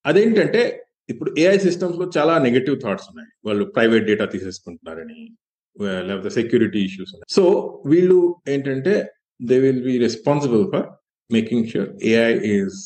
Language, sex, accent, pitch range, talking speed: Telugu, male, native, 125-180 Hz, 130 wpm